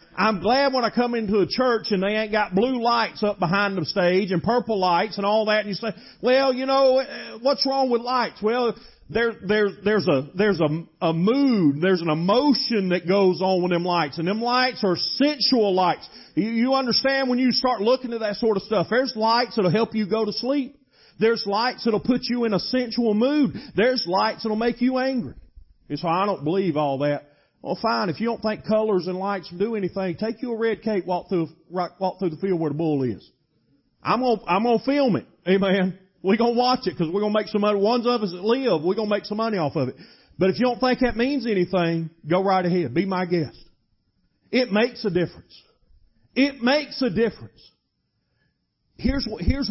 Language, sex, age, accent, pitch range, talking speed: English, male, 40-59, American, 180-240 Hz, 220 wpm